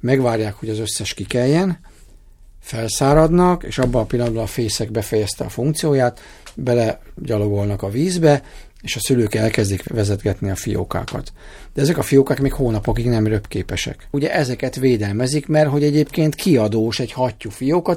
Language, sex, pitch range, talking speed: Hungarian, male, 110-140 Hz, 145 wpm